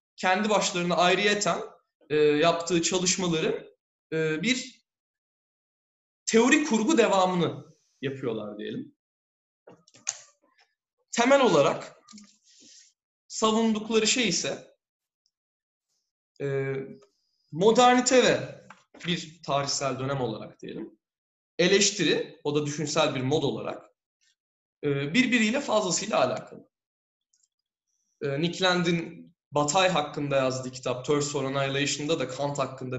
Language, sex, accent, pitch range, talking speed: Turkish, male, native, 140-220 Hz, 90 wpm